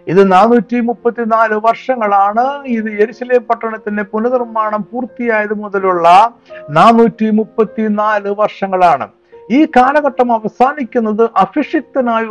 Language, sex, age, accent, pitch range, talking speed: Malayalam, male, 60-79, native, 205-250 Hz, 90 wpm